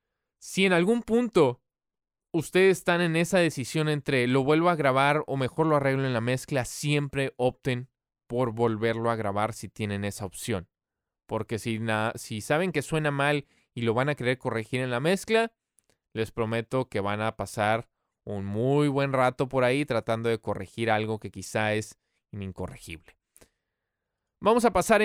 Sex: male